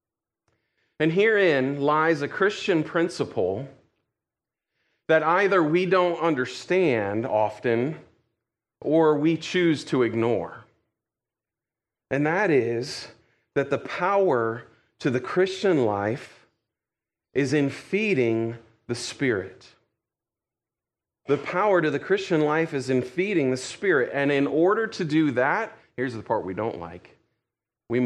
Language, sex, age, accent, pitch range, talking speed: English, male, 40-59, American, 115-165 Hz, 120 wpm